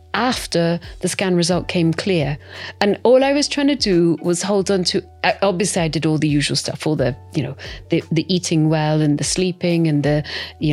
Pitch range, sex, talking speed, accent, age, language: 155-205 Hz, female, 215 wpm, British, 40-59, English